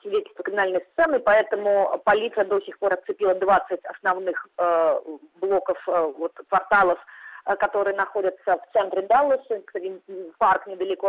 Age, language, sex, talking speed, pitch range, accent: 30-49, Russian, female, 130 wpm, 185-240 Hz, native